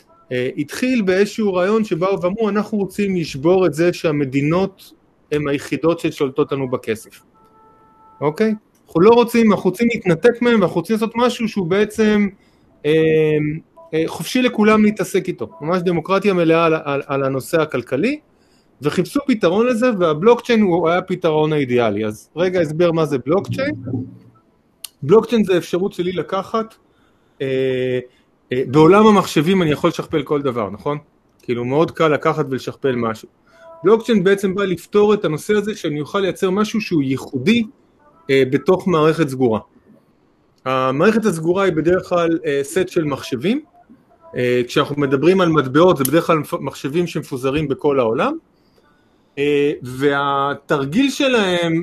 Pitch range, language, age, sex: 145-205 Hz, Hebrew, 30-49, male